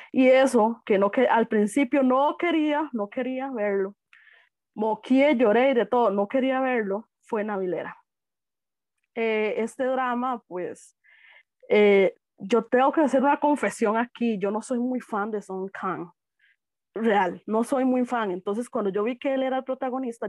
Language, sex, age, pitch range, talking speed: Spanish, female, 20-39, 205-265 Hz, 165 wpm